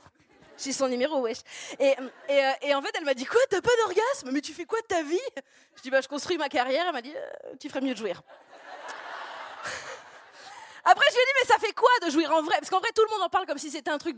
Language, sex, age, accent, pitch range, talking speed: French, female, 20-39, French, 245-320 Hz, 300 wpm